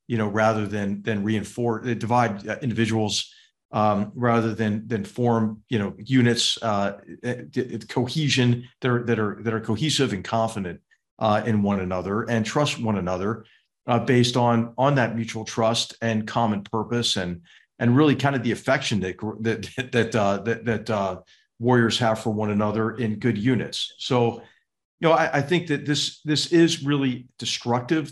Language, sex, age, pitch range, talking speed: English, male, 50-69, 110-135 Hz, 165 wpm